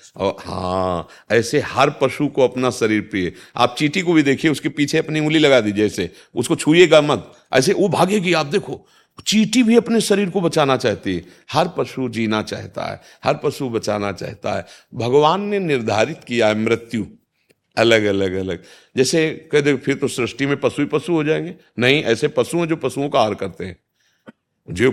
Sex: male